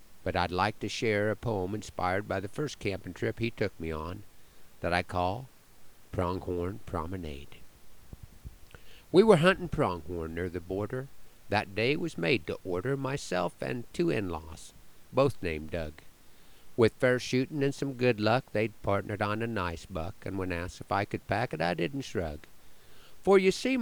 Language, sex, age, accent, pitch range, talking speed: English, male, 50-69, American, 95-125 Hz, 175 wpm